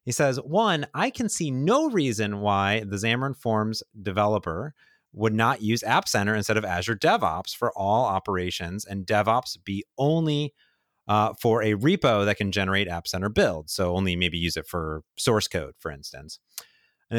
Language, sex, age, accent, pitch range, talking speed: English, male, 30-49, American, 95-130 Hz, 175 wpm